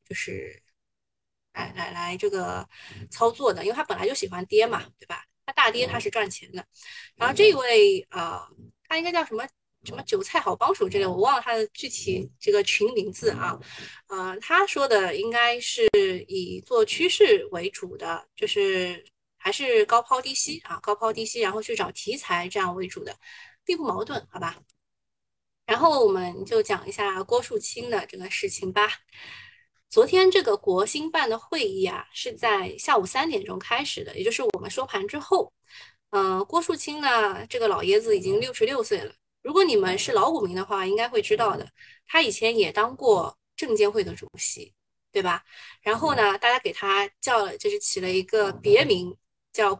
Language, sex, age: Chinese, female, 20-39